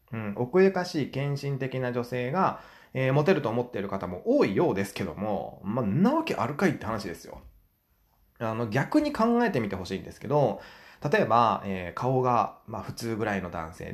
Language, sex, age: Japanese, male, 20-39